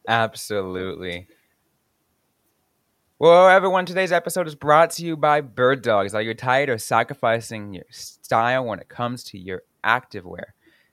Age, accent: 20-39, American